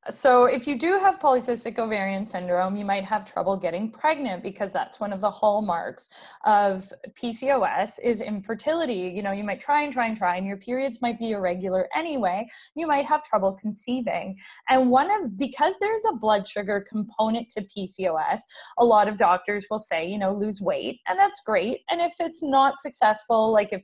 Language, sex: English, female